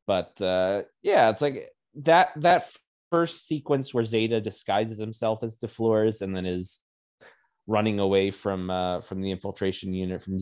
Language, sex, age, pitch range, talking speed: English, male, 20-39, 90-110 Hz, 160 wpm